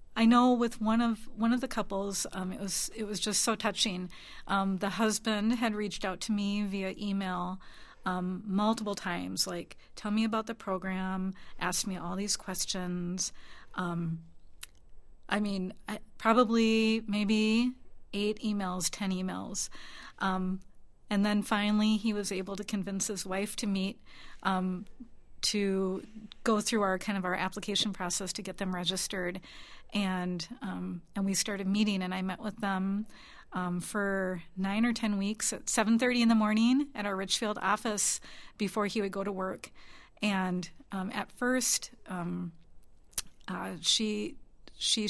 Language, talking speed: English, 160 wpm